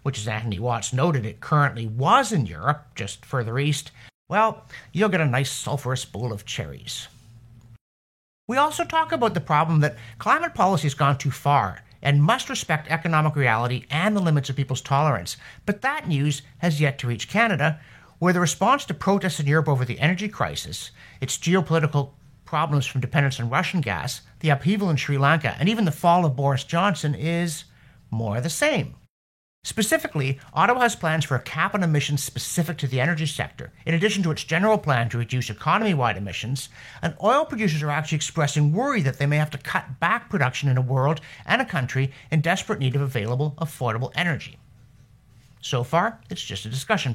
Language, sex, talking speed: English, male, 185 wpm